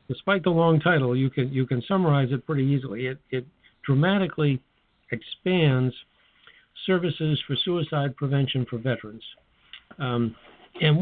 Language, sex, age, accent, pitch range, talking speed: English, male, 60-79, American, 125-155 Hz, 130 wpm